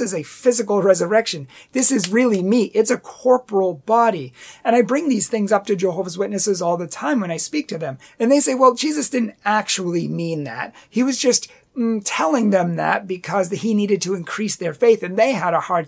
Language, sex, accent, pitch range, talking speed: English, male, American, 175-225 Hz, 215 wpm